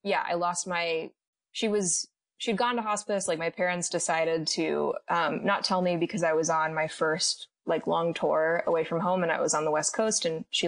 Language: English